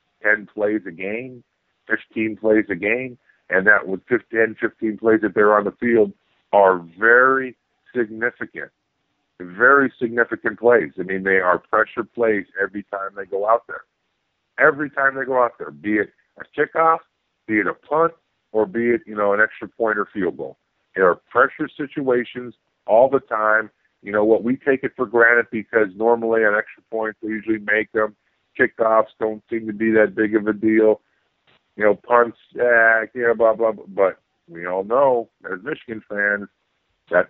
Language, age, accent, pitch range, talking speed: English, 50-69, American, 100-120 Hz, 180 wpm